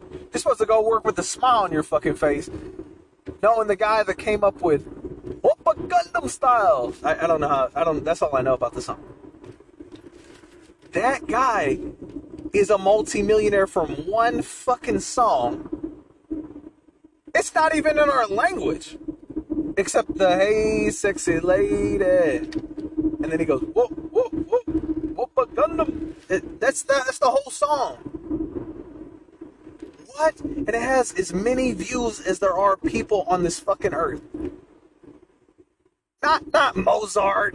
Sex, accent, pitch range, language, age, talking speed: male, American, 220-335 Hz, English, 30-49, 135 wpm